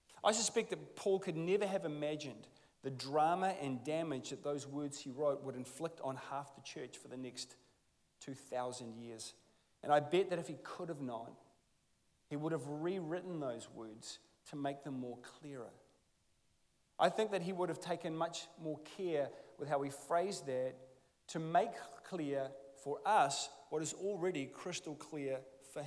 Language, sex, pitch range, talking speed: English, male, 140-175 Hz, 170 wpm